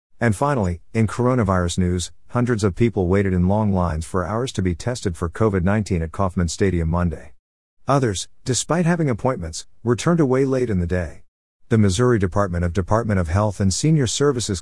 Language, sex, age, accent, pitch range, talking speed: English, male, 50-69, American, 90-110 Hz, 180 wpm